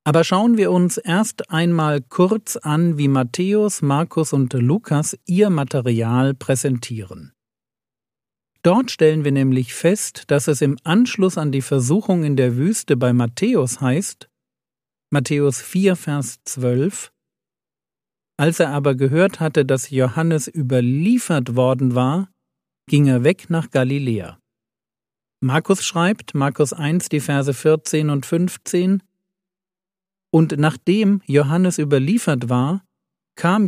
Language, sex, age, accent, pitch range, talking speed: German, male, 50-69, German, 135-175 Hz, 120 wpm